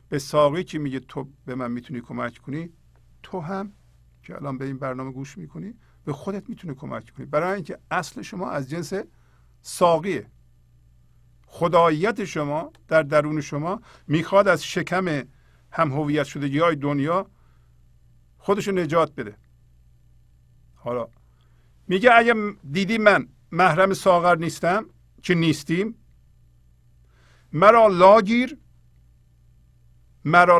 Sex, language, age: male, Persian, 50-69